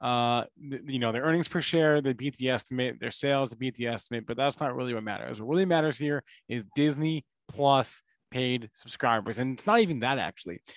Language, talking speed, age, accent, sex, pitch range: English, 210 wpm, 20-39, American, male, 120-165 Hz